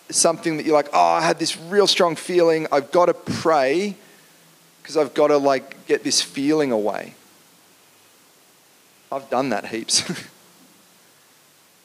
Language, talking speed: English, 140 wpm